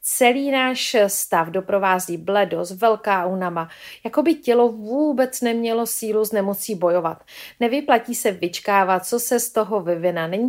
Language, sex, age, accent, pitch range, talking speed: Czech, female, 40-59, native, 175-245 Hz, 150 wpm